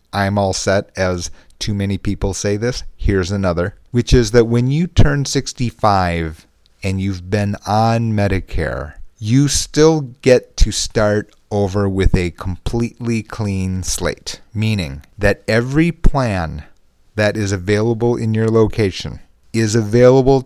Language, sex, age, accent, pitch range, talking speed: English, male, 40-59, American, 95-115 Hz, 135 wpm